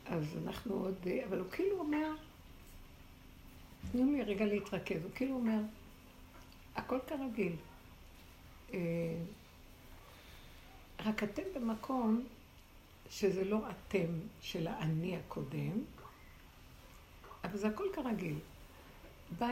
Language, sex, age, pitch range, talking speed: Hebrew, female, 60-79, 160-220 Hz, 90 wpm